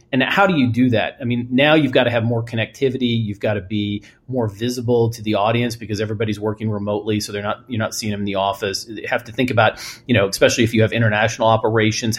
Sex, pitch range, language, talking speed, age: male, 110-125 Hz, English, 250 wpm, 30-49